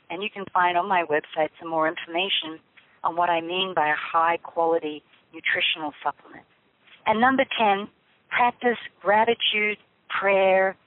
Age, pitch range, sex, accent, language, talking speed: 50-69, 160-200 Hz, female, American, English, 140 wpm